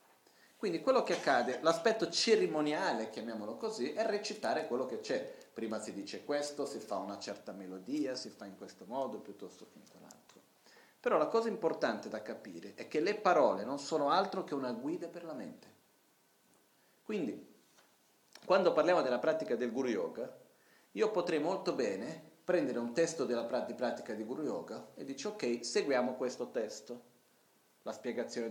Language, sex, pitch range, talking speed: Italian, male, 120-175 Hz, 165 wpm